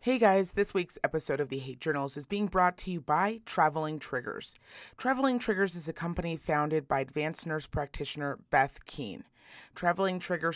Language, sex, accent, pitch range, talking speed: English, female, American, 150-195 Hz, 175 wpm